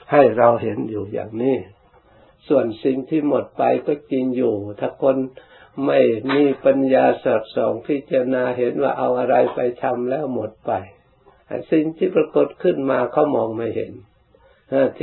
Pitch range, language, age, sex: 125-140 Hz, Thai, 60-79, male